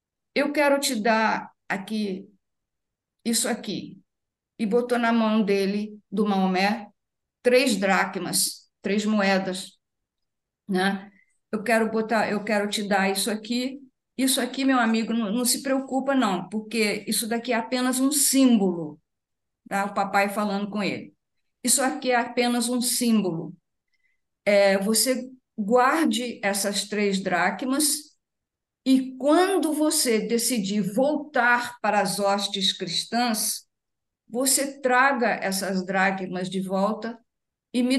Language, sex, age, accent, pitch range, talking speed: Portuguese, female, 50-69, Brazilian, 200-260 Hz, 120 wpm